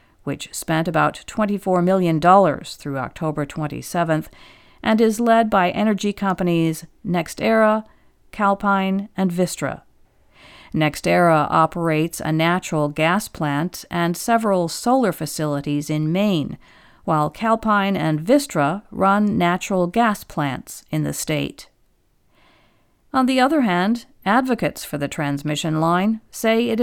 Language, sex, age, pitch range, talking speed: English, female, 50-69, 160-215 Hz, 115 wpm